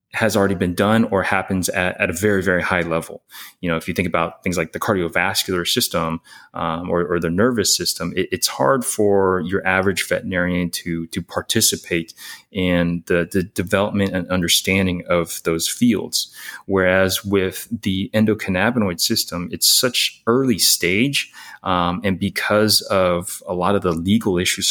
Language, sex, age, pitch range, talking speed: Hebrew, male, 30-49, 90-105 Hz, 165 wpm